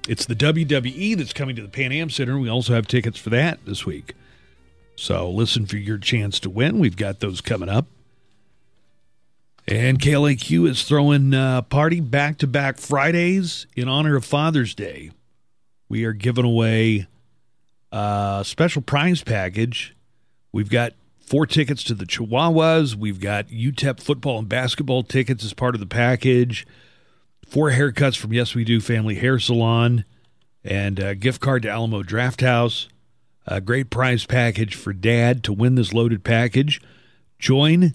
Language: English